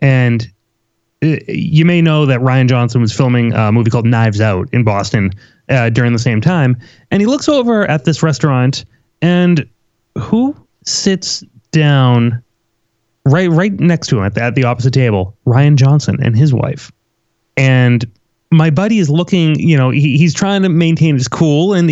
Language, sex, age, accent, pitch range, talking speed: English, male, 30-49, American, 125-175 Hz, 170 wpm